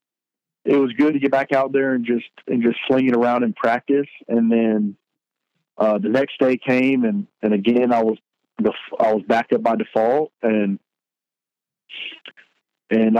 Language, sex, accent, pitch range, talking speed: English, male, American, 110-125 Hz, 170 wpm